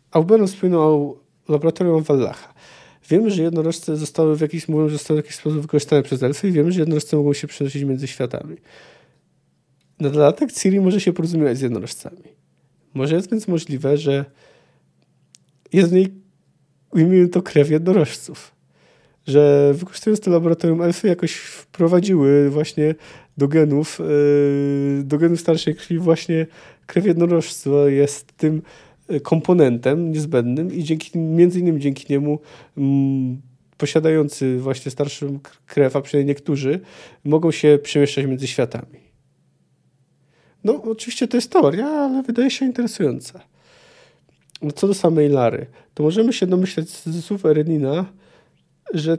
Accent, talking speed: native, 130 wpm